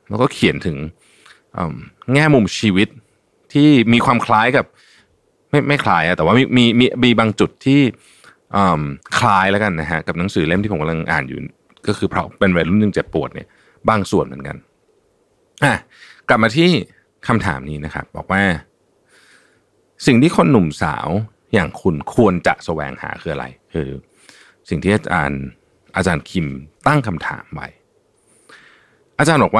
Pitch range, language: 85-125 Hz, Thai